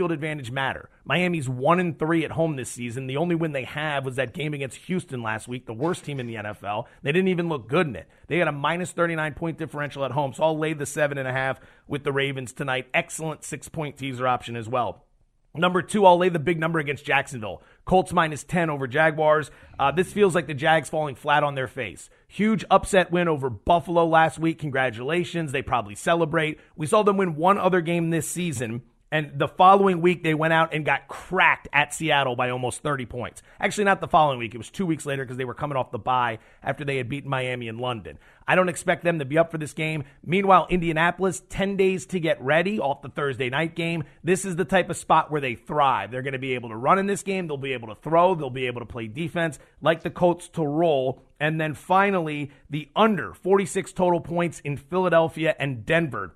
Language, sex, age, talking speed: English, male, 30-49, 230 wpm